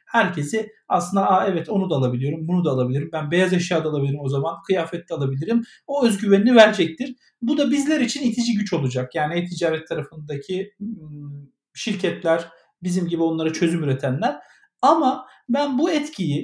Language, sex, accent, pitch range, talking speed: Turkish, male, native, 170-235 Hz, 145 wpm